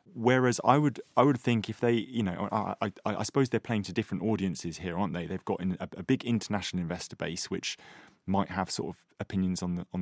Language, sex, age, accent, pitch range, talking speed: English, male, 20-39, British, 95-120 Hz, 240 wpm